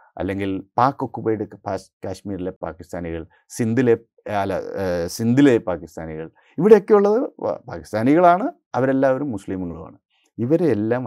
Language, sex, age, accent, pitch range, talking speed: Malayalam, male, 30-49, native, 100-165 Hz, 80 wpm